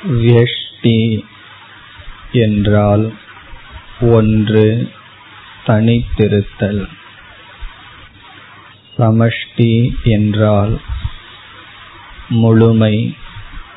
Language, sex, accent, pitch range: Tamil, male, native, 100-115 Hz